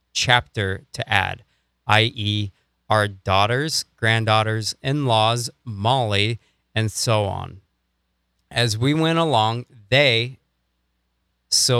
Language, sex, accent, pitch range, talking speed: English, male, American, 100-120 Hz, 90 wpm